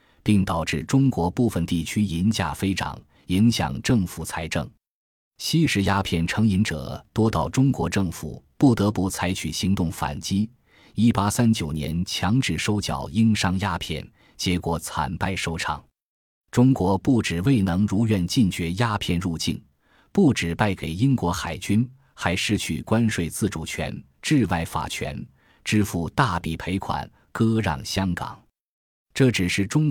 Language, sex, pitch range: Chinese, male, 85-115 Hz